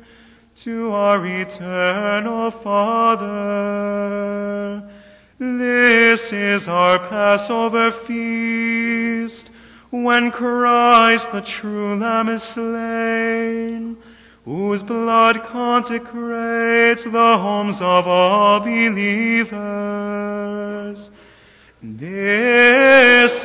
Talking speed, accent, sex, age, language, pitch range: 65 wpm, American, male, 30-49, English, 205-235 Hz